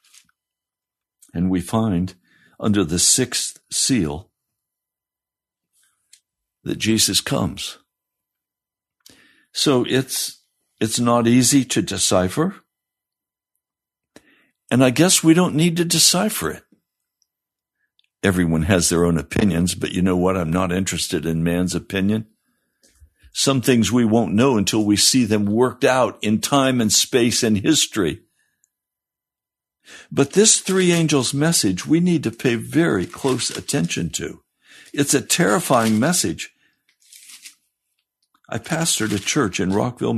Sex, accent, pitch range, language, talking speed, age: male, American, 95-130 Hz, English, 120 wpm, 60-79